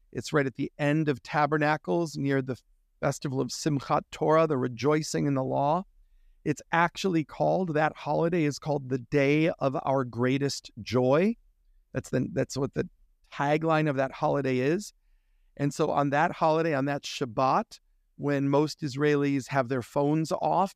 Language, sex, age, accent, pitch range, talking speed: English, male, 40-59, American, 130-155 Hz, 160 wpm